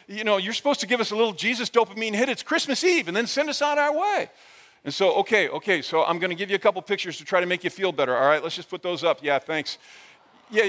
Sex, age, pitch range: male, 50-69, 175-250 Hz